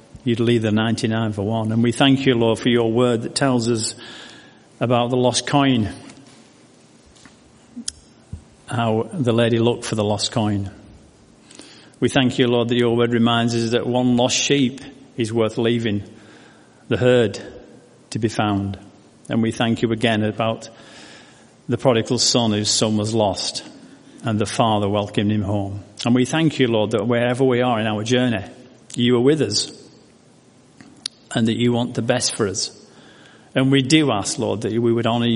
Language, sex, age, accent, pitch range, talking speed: English, male, 50-69, British, 110-125 Hz, 175 wpm